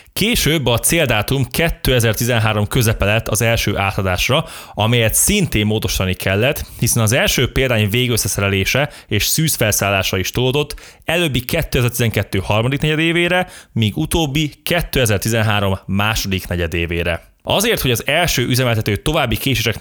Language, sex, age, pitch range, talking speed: Hungarian, male, 20-39, 105-140 Hz, 110 wpm